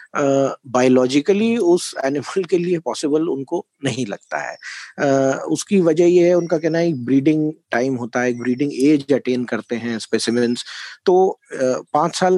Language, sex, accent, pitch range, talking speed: Hindi, male, native, 125-190 Hz, 135 wpm